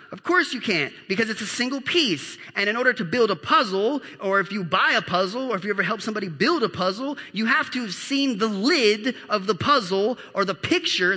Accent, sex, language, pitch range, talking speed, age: American, male, English, 185-255 Hz, 235 wpm, 30-49